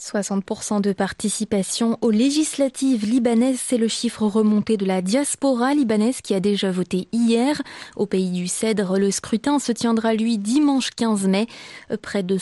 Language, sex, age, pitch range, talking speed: French, female, 20-39, 205-255 Hz, 160 wpm